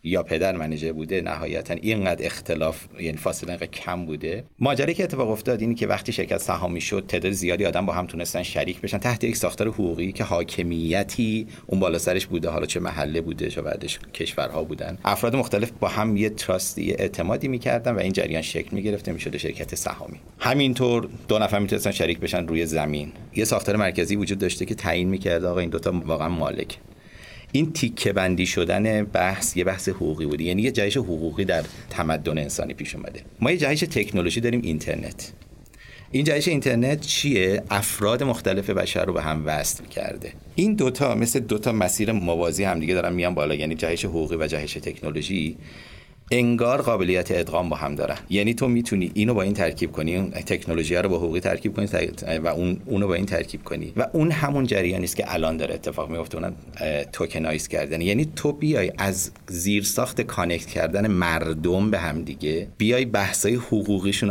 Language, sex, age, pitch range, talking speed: Persian, male, 30-49, 85-115 Hz, 185 wpm